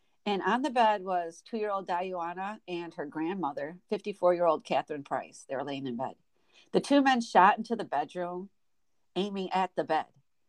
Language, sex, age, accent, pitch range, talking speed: English, female, 50-69, American, 170-225 Hz, 165 wpm